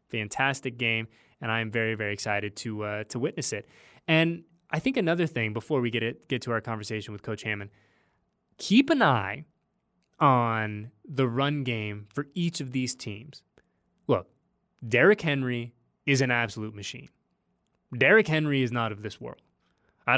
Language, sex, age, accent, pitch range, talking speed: English, male, 20-39, American, 120-165 Hz, 165 wpm